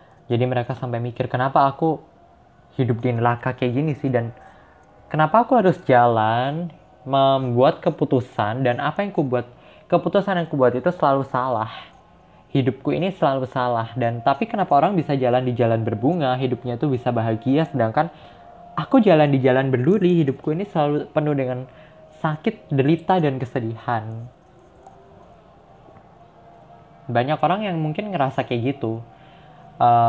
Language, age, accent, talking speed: Indonesian, 10-29, native, 140 wpm